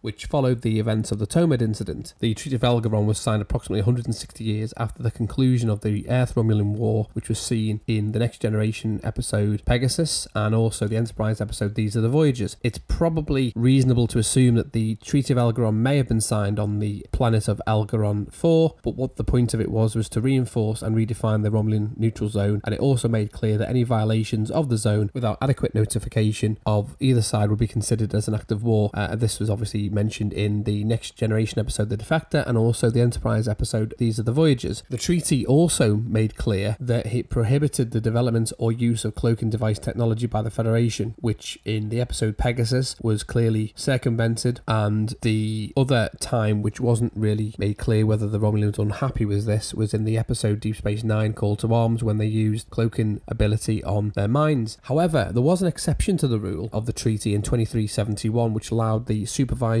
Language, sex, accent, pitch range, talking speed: English, male, British, 105-120 Hz, 205 wpm